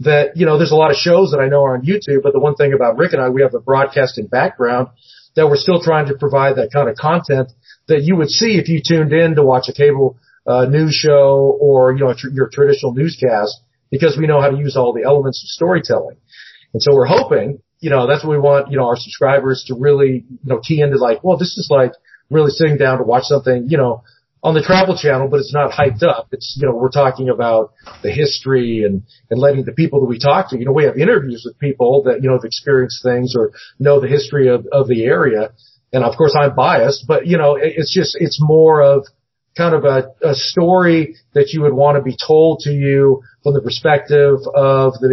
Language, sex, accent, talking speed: English, male, American, 240 wpm